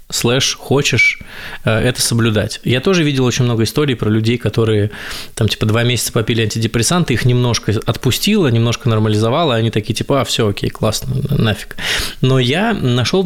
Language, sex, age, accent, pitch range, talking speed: Russian, male, 20-39, native, 110-135 Hz, 160 wpm